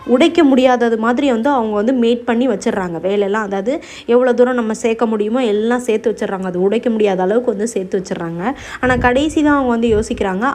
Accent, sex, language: native, female, Tamil